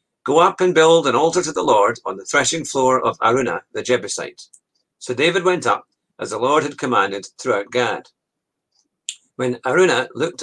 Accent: British